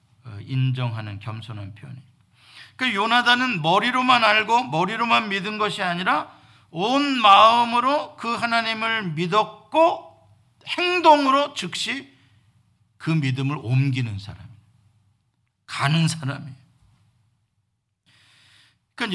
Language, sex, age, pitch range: Korean, male, 50-69, 115-180 Hz